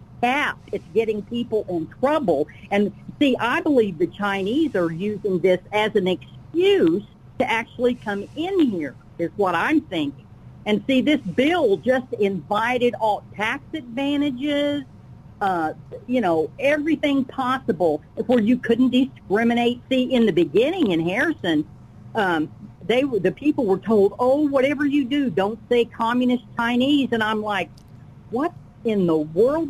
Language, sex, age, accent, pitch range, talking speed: English, female, 50-69, American, 200-285 Hz, 145 wpm